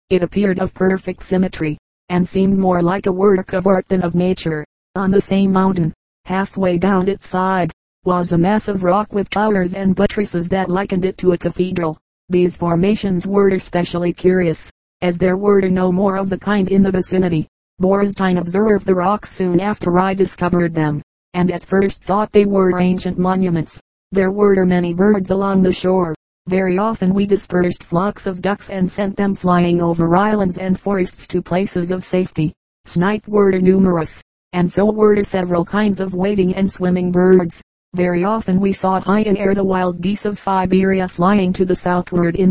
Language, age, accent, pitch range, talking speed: English, 40-59, American, 180-195 Hz, 180 wpm